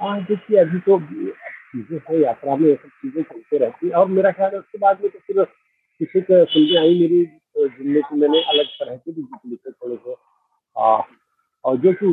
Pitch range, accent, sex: 140-205 Hz, native, male